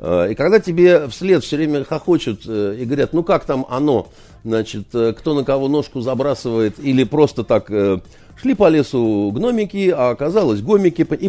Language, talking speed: Russian, 160 wpm